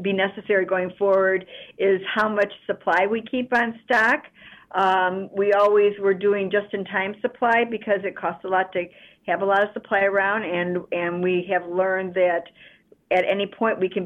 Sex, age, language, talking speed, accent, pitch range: female, 50-69, English, 180 wpm, American, 185-210 Hz